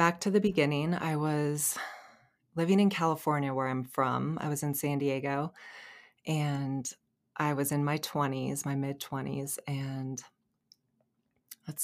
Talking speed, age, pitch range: 135 wpm, 20-39, 130-150 Hz